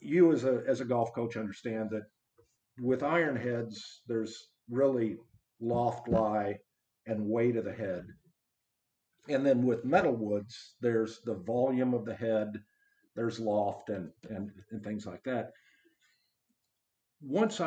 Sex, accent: male, American